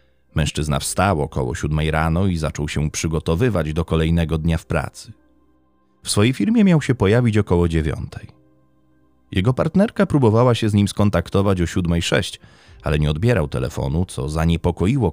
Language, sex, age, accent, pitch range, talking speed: Polish, male, 30-49, native, 75-105 Hz, 150 wpm